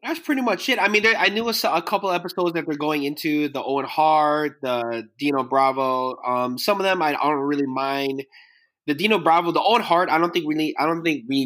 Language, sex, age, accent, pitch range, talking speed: English, male, 20-39, American, 120-155 Hz, 245 wpm